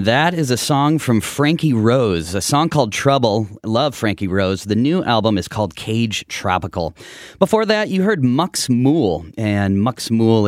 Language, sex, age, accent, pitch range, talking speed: English, male, 30-49, American, 95-140 Hz, 170 wpm